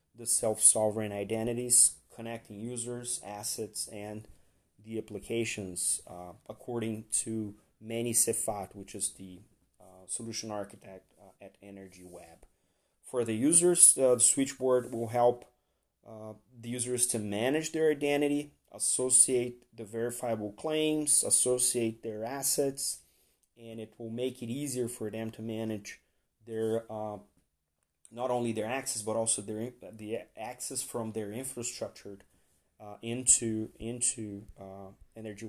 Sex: male